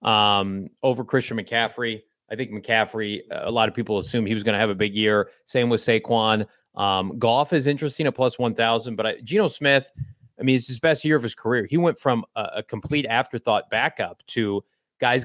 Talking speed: 215 wpm